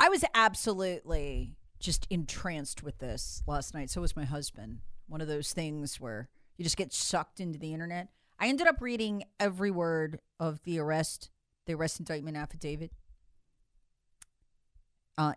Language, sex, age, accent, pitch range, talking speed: English, female, 40-59, American, 155-225 Hz, 150 wpm